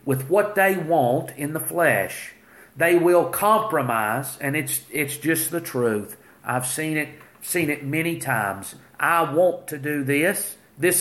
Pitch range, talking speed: 125-155 Hz, 160 wpm